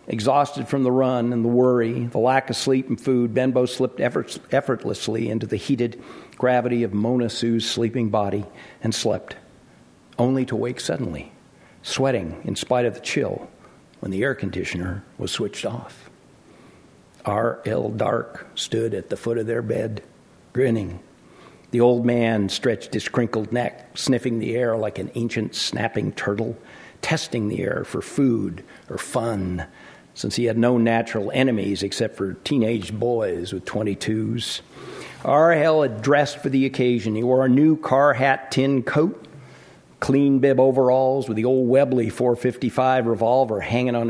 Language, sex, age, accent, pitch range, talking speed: English, male, 60-79, American, 115-130 Hz, 160 wpm